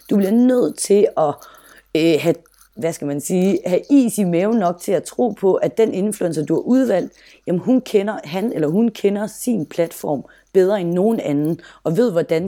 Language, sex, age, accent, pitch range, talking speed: Danish, female, 30-49, native, 150-205 Hz, 175 wpm